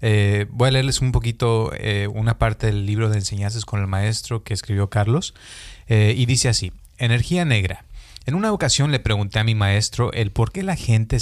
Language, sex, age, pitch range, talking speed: Spanish, male, 30-49, 100-125 Hz, 205 wpm